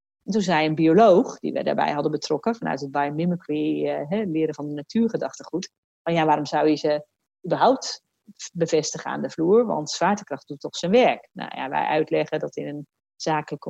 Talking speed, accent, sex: 185 wpm, Dutch, female